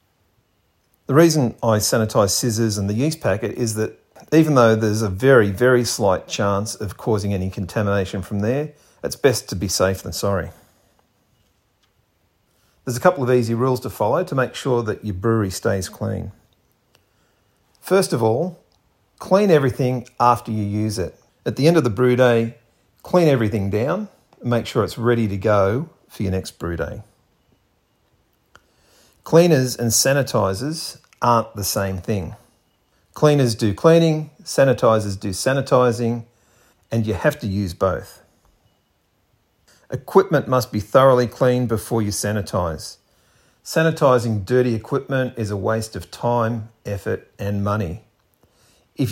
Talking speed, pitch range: 145 wpm, 100-125 Hz